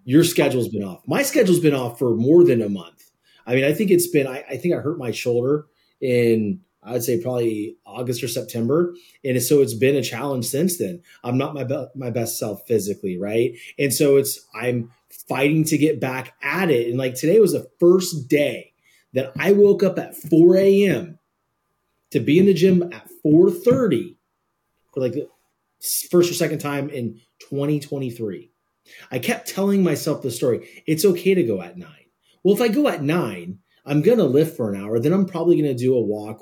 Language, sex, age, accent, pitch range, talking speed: English, male, 30-49, American, 120-175 Hz, 210 wpm